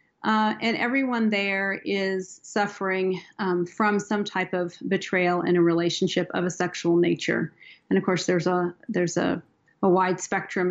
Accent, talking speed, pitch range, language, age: American, 165 wpm, 175-205 Hz, English, 40-59